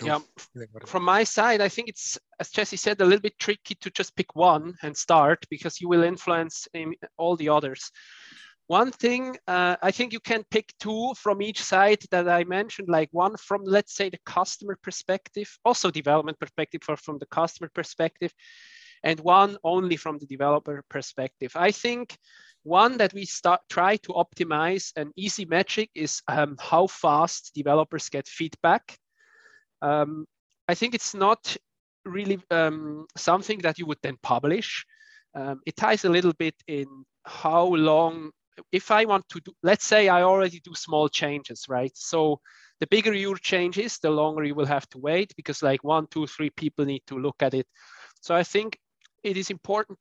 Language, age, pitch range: English, 20-39, 150-200 Hz